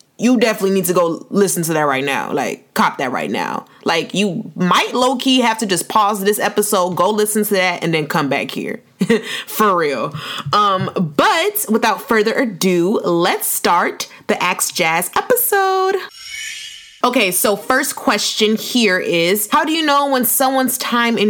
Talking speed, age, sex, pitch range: 170 wpm, 20-39, female, 175-225 Hz